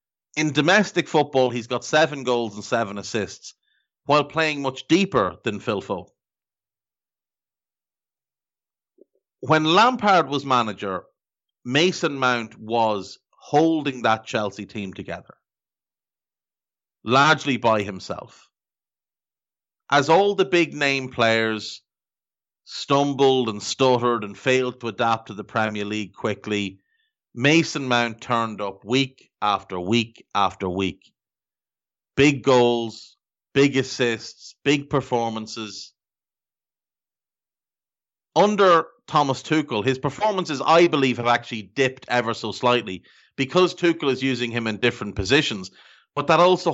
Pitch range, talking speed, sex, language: 110-145 Hz, 110 wpm, male, English